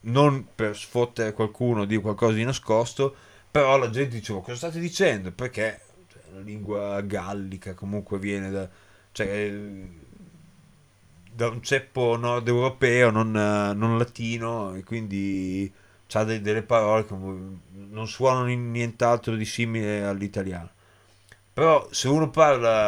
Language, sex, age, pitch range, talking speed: Italian, male, 30-49, 105-120 Hz, 125 wpm